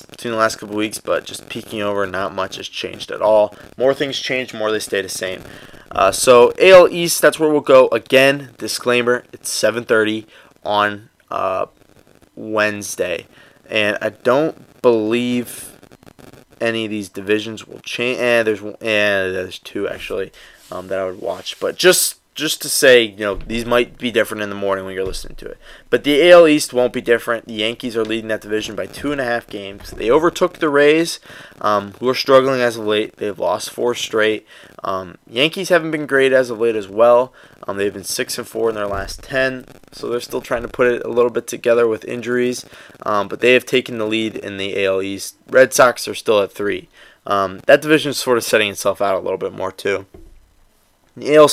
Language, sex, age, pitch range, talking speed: English, male, 20-39, 105-130 Hz, 205 wpm